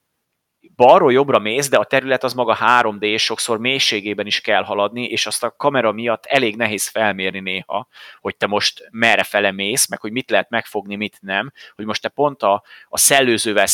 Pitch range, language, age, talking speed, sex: 105-125 Hz, Hungarian, 30-49, 190 wpm, male